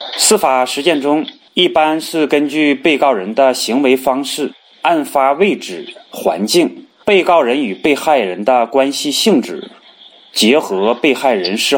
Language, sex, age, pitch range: Chinese, male, 30-49, 135-190 Hz